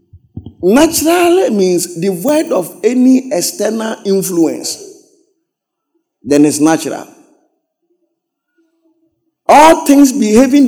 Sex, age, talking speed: male, 50-69, 75 wpm